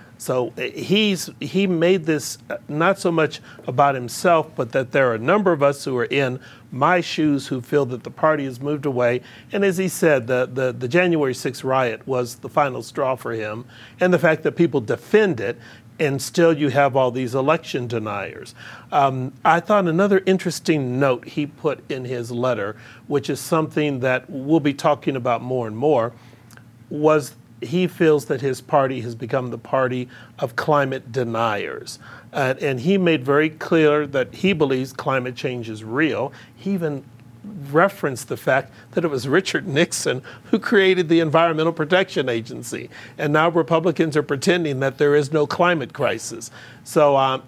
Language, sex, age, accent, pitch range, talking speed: English, male, 40-59, American, 125-160 Hz, 175 wpm